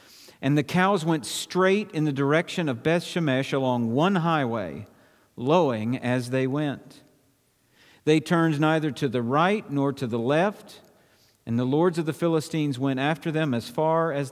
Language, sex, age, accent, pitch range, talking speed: English, male, 50-69, American, 140-225 Hz, 170 wpm